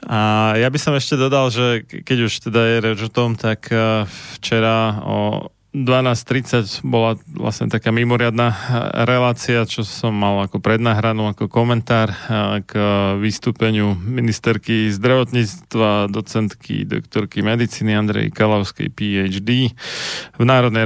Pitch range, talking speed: 105-115 Hz, 120 wpm